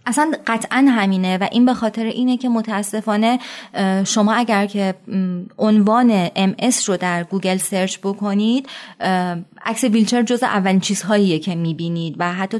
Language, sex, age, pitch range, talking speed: Persian, female, 30-49, 185-225 Hz, 140 wpm